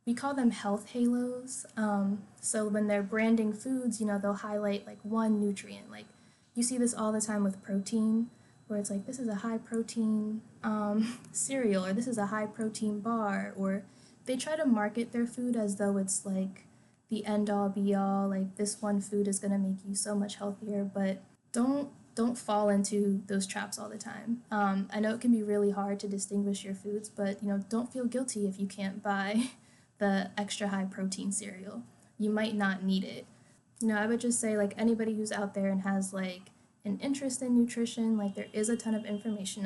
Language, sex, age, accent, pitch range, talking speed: English, female, 10-29, American, 200-225 Hz, 205 wpm